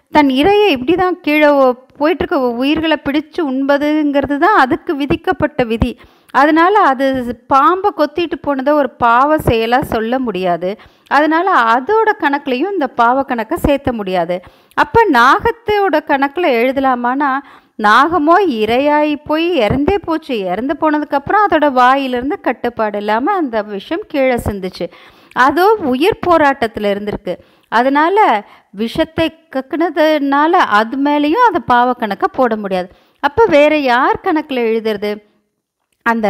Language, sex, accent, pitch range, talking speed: Tamil, female, native, 235-320 Hz, 115 wpm